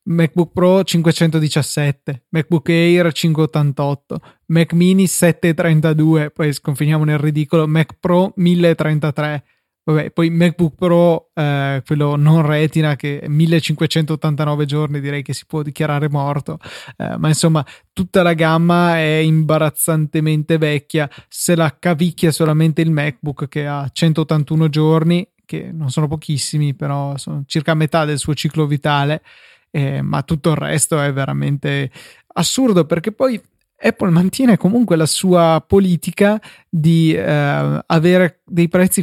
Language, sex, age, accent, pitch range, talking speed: Italian, male, 20-39, native, 150-175 Hz, 130 wpm